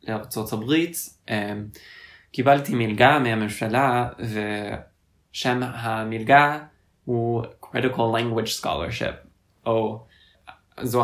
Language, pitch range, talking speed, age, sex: Hebrew, 105-120 Hz, 70 wpm, 20-39, male